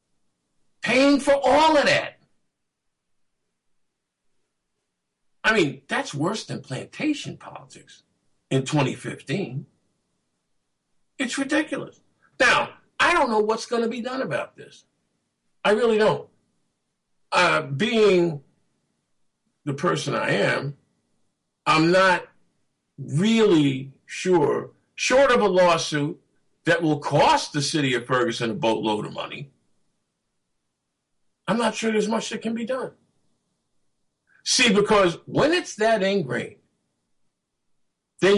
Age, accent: 50-69, American